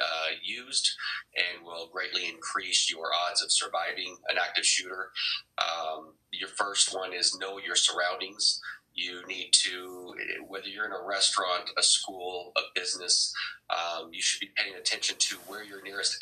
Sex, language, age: male, English, 30-49